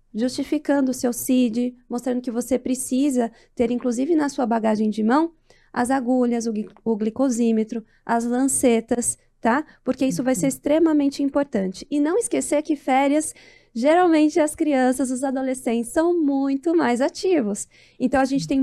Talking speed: 150 wpm